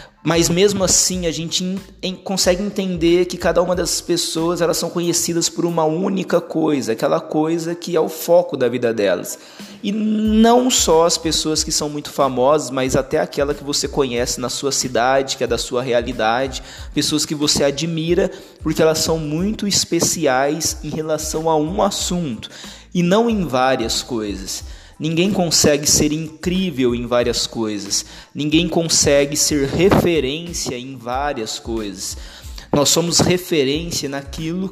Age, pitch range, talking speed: 20-39, 140-175 Hz, 155 wpm